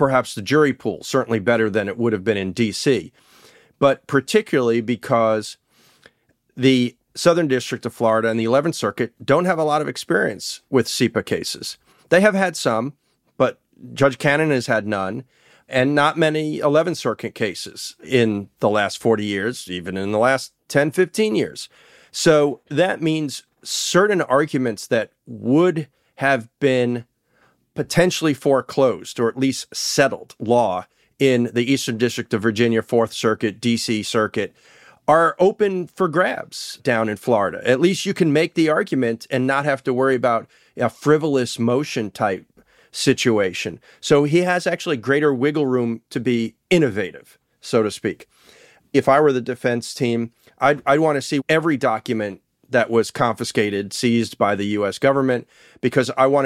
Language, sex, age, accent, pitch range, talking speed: English, male, 40-59, American, 115-150 Hz, 160 wpm